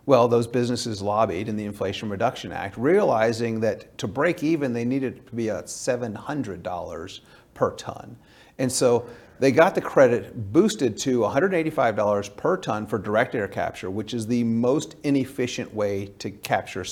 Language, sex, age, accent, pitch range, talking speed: English, male, 40-59, American, 105-130 Hz, 160 wpm